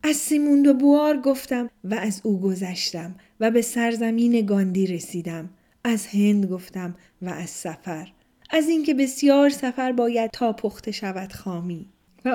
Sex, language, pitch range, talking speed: female, Persian, 195-250 Hz, 140 wpm